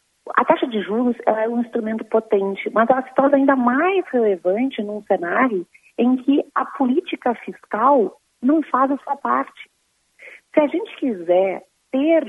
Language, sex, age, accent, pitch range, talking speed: Portuguese, female, 40-59, Brazilian, 205-275 Hz, 160 wpm